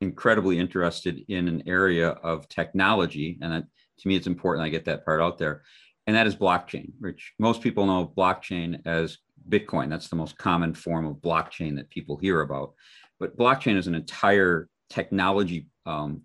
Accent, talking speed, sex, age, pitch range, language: American, 180 wpm, male, 40-59, 80-95 Hz, English